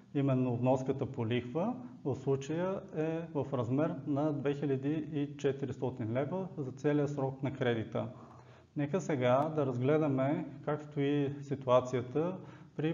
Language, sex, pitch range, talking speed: Bulgarian, male, 130-155 Hz, 115 wpm